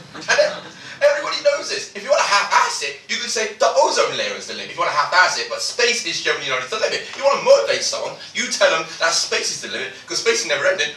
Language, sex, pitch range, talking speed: English, male, 190-310 Hz, 285 wpm